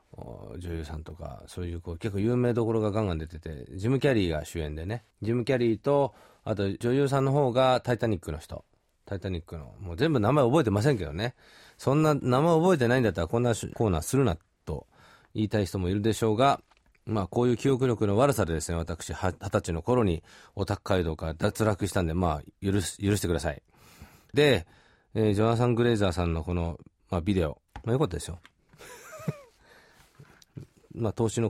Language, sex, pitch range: Japanese, male, 90-125 Hz